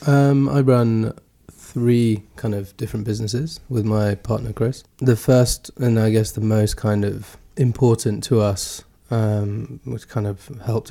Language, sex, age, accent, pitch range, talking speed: English, male, 20-39, British, 105-120 Hz, 160 wpm